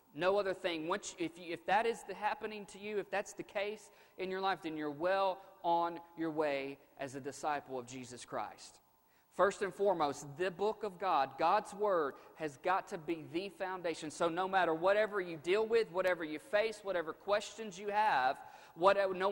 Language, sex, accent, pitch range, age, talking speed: English, male, American, 165-205 Hz, 40-59, 185 wpm